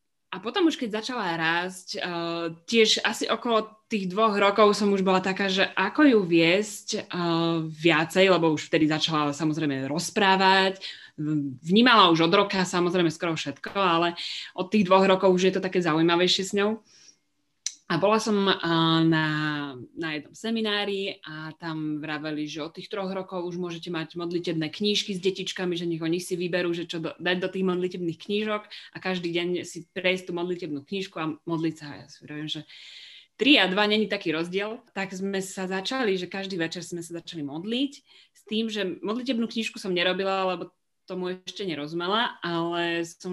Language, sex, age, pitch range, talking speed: Slovak, female, 20-39, 165-200 Hz, 175 wpm